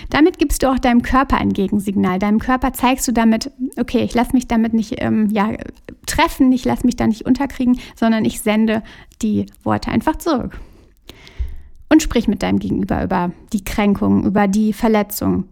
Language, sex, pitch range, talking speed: German, female, 205-250 Hz, 180 wpm